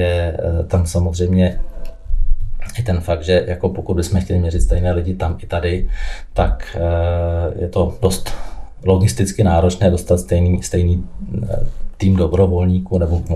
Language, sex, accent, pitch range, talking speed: Czech, male, native, 85-95 Hz, 130 wpm